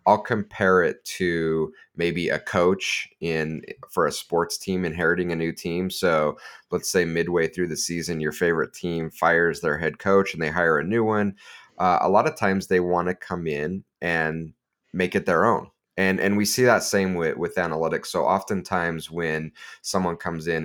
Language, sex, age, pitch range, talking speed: English, male, 30-49, 80-95 Hz, 190 wpm